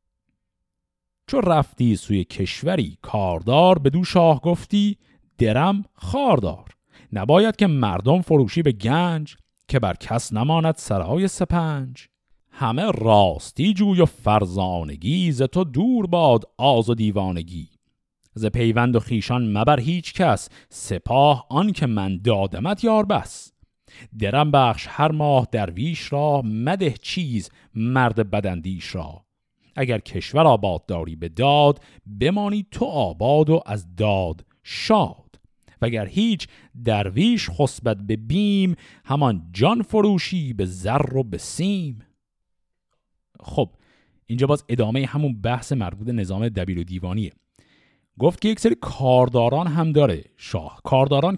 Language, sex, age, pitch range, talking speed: Persian, male, 50-69, 105-160 Hz, 125 wpm